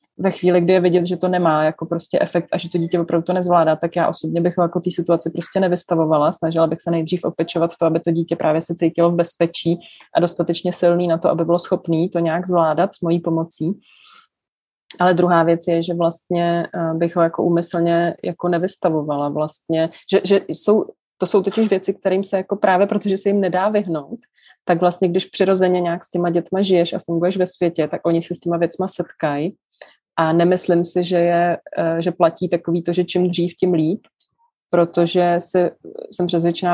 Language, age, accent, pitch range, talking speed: Czech, 30-49, native, 165-180 Hz, 200 wpm